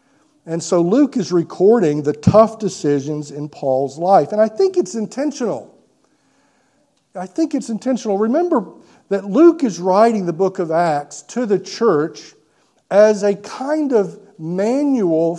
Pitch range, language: 155-245 Hz, English